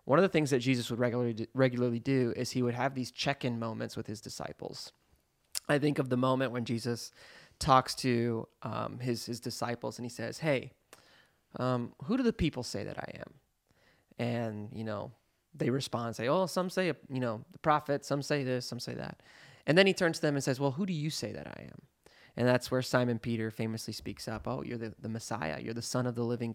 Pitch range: 120-150 Hz